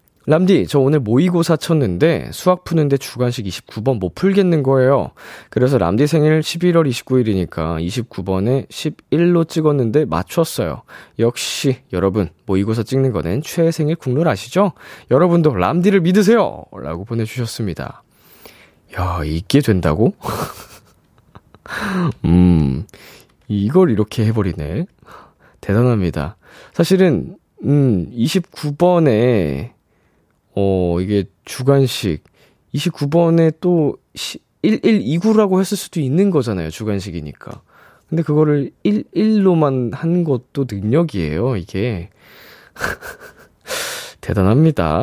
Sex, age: male, 20-39